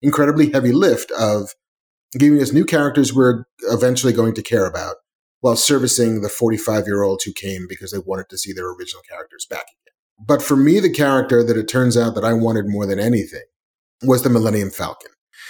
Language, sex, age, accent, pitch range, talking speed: English, male, 30-49, American, 115-145 Hz, 190 wpm